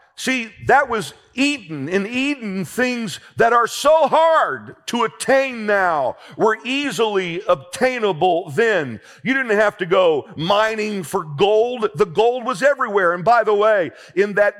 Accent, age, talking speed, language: American, 50-69, 150 wpm, English